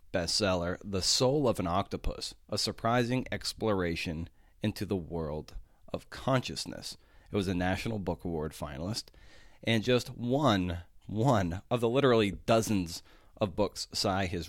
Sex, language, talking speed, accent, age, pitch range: male, English, 135 wpm, American, 30-49, 85-120 Hz